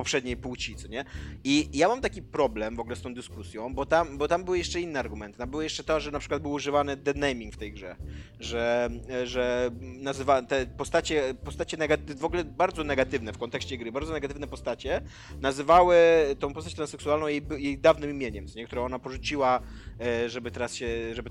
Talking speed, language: 190 wpm, Polish